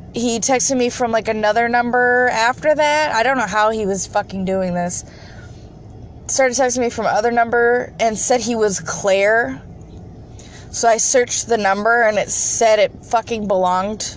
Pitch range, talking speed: 185-240 Hz, 170 wpm